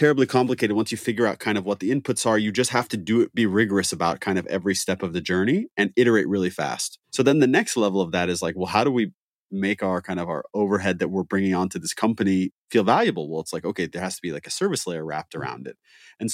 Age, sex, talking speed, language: 30-49, male, 275 wpm, English